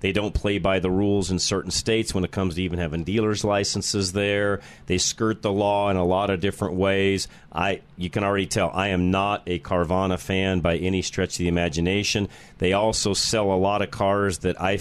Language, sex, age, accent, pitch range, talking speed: English, male, 40-59, American, 90-105 Hz, 220 wpm